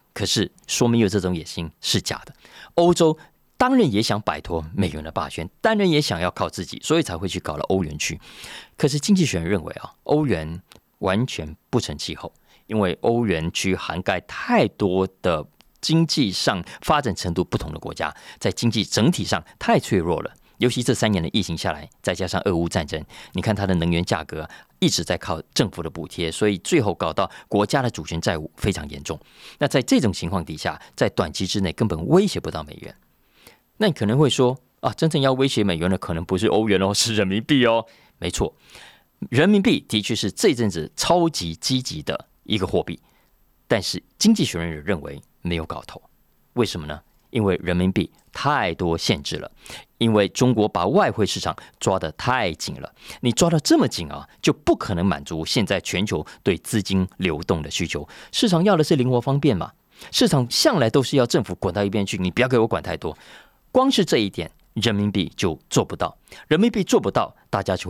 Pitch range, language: 85-130 Hz, Chinese